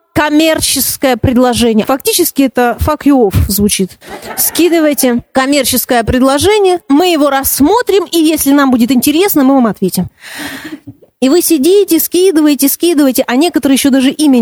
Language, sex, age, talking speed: Russian, female, 30-49, 135 wpm